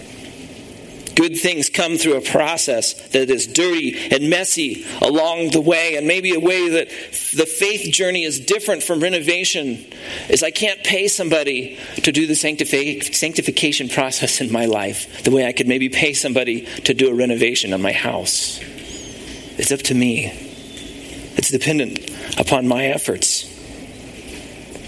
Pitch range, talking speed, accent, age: 140-195 Hz, 150 wpm, American, 40-59